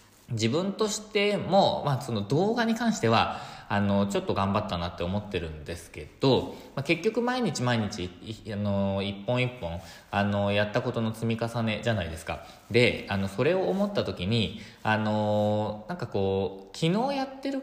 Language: Japanese